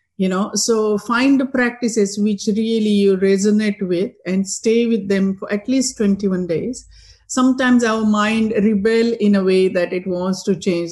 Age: 50-69